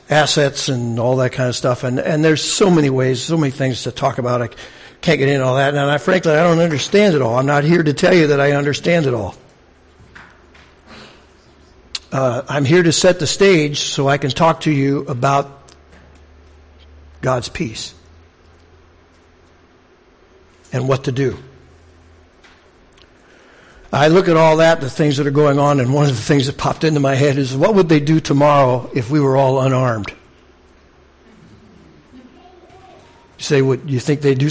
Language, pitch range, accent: English, 130-170 Hz, American